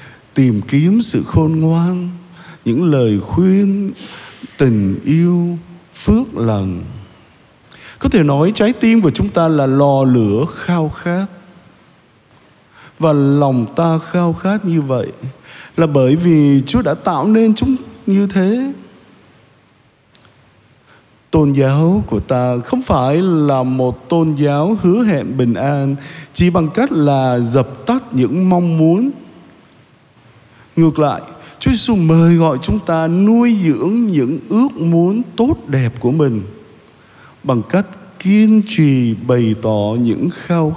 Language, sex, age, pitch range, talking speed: Vietnamese, male, 20-39, 125-180 Hz, 130 wpm